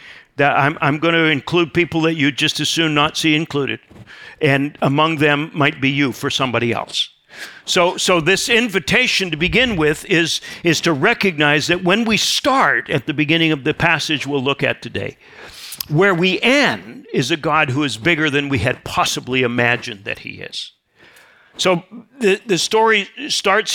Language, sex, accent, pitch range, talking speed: English, male, American, 145-185 Hz, 180 wpm